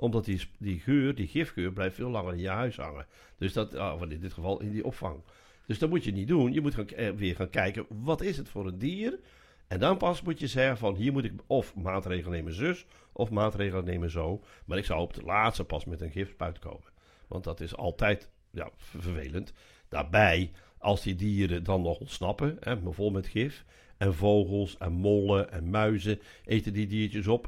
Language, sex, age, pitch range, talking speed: Dutch, male, 60-79, 95-120 Hz, 210 wpm